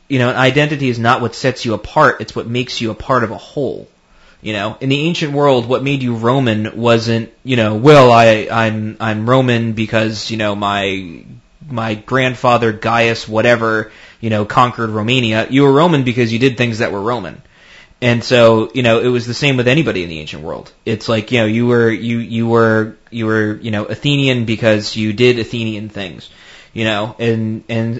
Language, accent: English, American